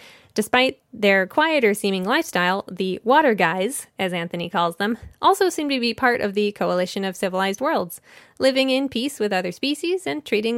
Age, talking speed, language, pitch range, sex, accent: 20-39, 170 wpm, English, 195-265 Hz, female, American